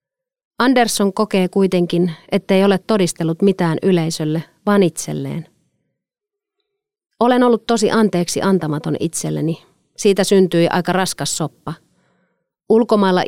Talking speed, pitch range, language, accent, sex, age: 100 wpm, 165-200 Hz, Finnish, native, female, 30-49